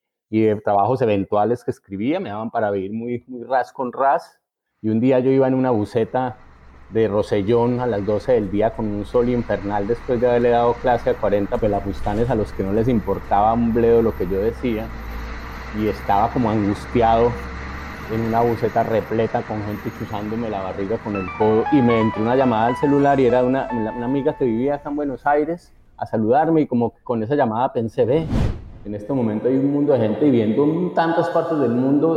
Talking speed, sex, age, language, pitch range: 210 wpm, male, 30-49, Spanish, 105-135 Hz